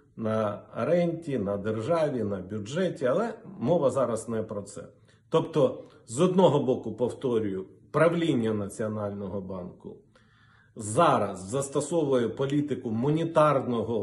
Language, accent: Ukrainian, native